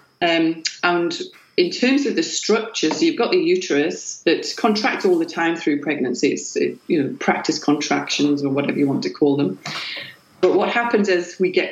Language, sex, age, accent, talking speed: English, female, 40-59, British, 195 wpm